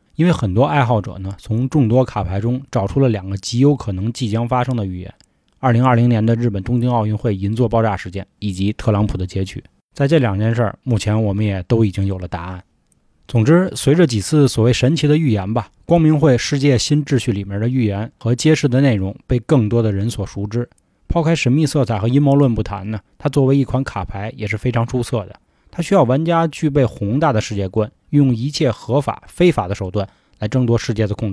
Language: Chinese